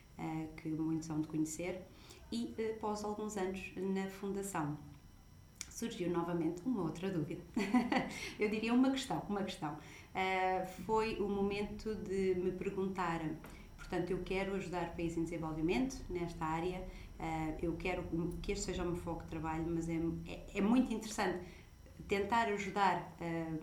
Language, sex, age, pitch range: Portuguese, female, 30-49, 160-190 Hz